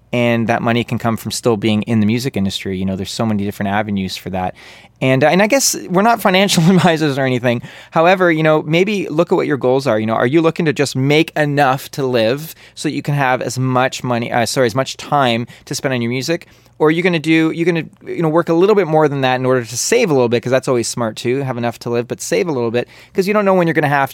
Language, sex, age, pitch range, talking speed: English, male, 20-39, 110-155 Hz, 285 wpm